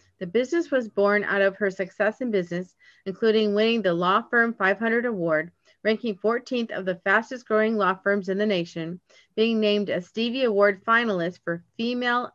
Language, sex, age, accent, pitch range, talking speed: English, female, 40-59, American, 185-220 Hz, 175 wpm